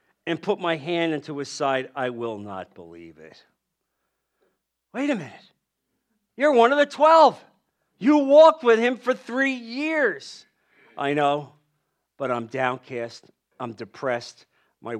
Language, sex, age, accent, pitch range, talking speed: English, male, 50-69, American, 145-245 Hz, 140 wpm